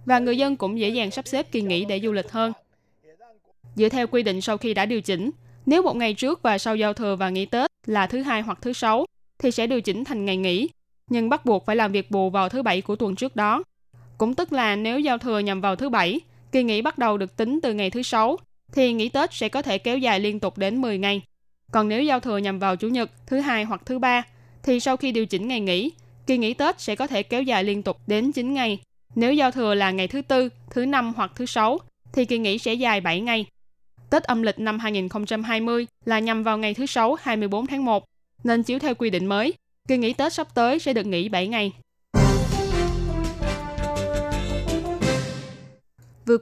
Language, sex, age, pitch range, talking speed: Vietnamese, female, 10-29, 195-245 Hz, 230 wpm